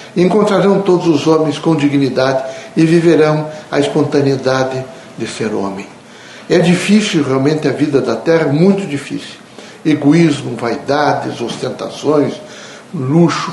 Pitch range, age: 140-175 Hz, 60-79